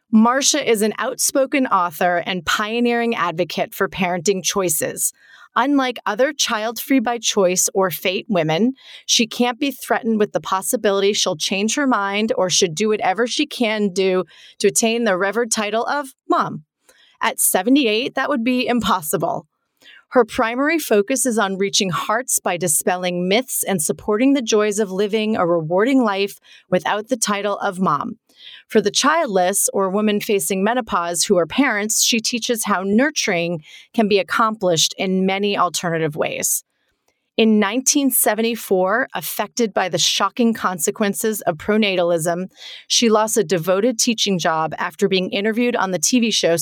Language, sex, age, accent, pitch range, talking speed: English, female, 30-49, American, 185-240 Hz, 150 wpm